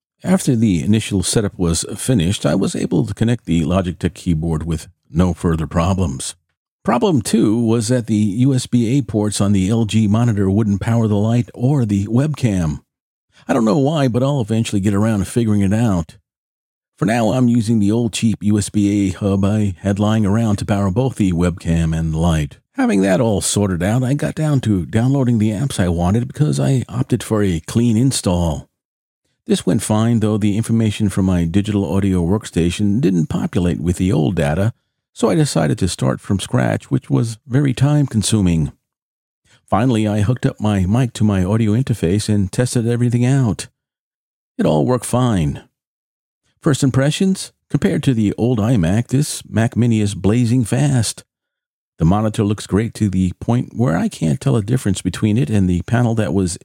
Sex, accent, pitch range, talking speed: male, American, 95-120 Hz, 180 wpm